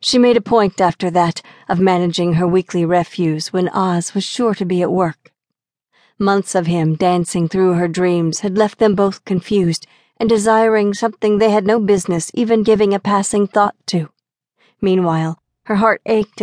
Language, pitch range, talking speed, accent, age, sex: English, 180-220 Hz, 175 wpm, American, 50-69, female